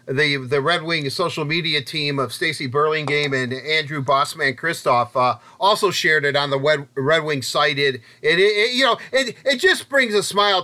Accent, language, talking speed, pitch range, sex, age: American, English, 190 wpm, 145-195 Hz, male, 40-59